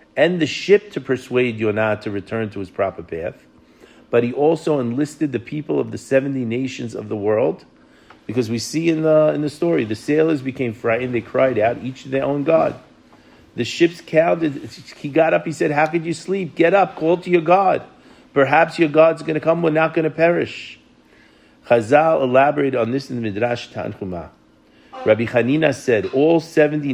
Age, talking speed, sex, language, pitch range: 50-69, 195 wpm, male, English, 125-160 Hz